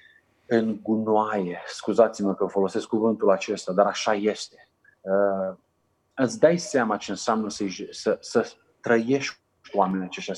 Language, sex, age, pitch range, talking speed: Romanian, male, 30-49, 105-140 Hz, 125 wpm